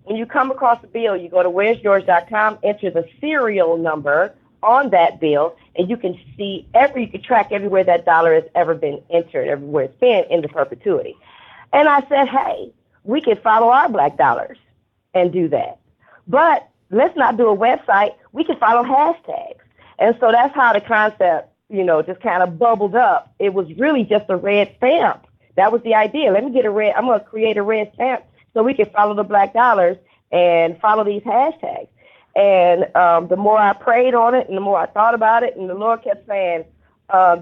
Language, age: English, 40-59